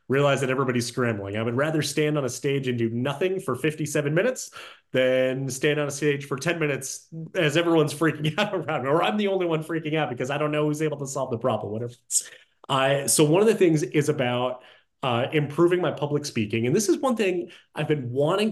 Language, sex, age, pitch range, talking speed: English, male, 30-49, 125-165 Hz, 225 wpm